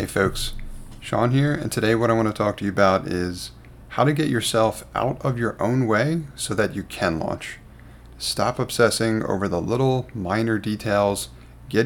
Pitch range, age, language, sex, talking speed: 95-120 Hz, 30-49, English, male, 185 wpm